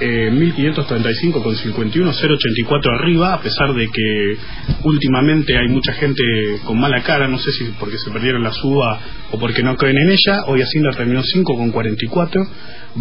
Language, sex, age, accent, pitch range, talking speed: English, male, 20-39, Argentinian, 120-160 Hz, 145 wpm